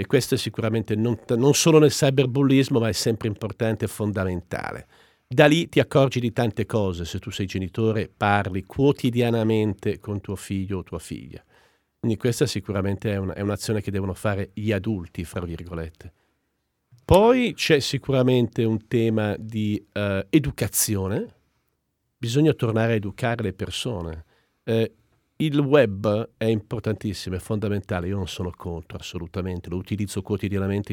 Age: 50-69